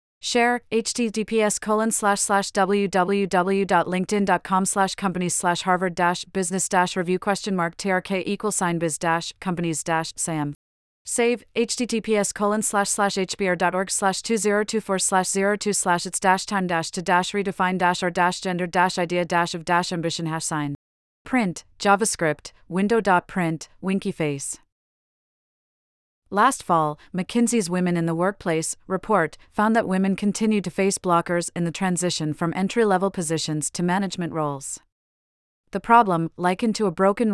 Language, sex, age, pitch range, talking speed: English, female, 30-49, 170-200 Hz, 150 wpm